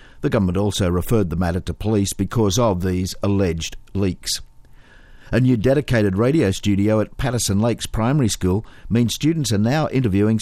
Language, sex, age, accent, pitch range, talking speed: English, male, 50-69, Australian, 95-120 Hz, 160 wpm